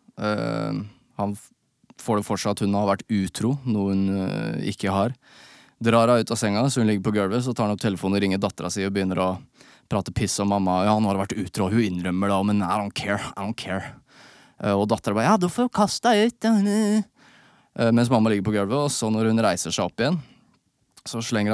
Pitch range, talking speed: 100-120 Hz, 225 wpm